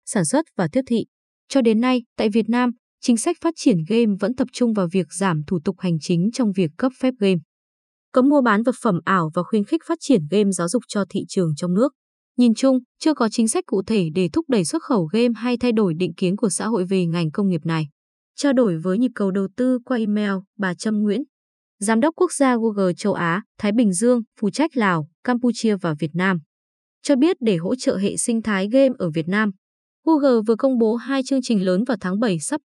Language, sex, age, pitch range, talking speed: Vietnamese, female, 20-39, 190-250 Hz, 240 wpm